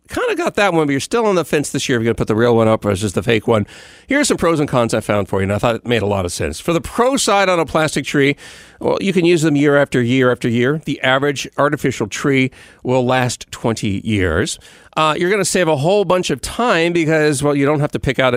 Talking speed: 290 wpm